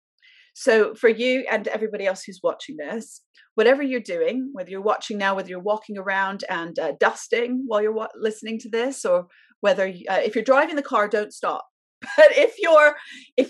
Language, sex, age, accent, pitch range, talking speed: English, female, 30-49, British, 190-275 Hz, 185 wpm